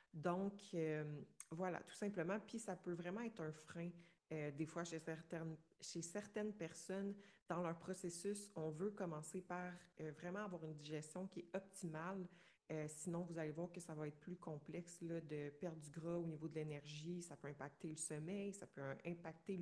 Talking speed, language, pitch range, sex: 195 wpm, French, 160-190 Hz, female